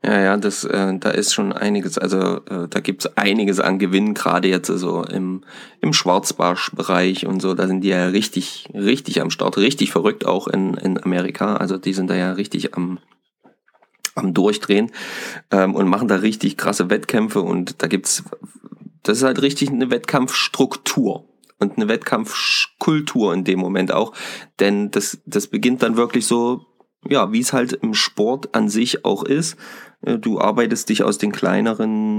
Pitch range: 95-120 Hz